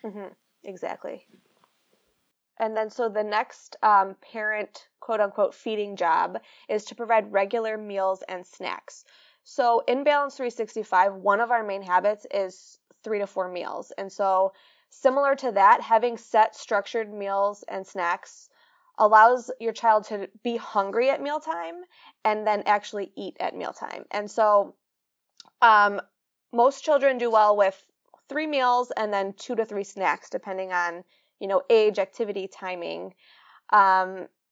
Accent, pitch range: American, 200-245 Hz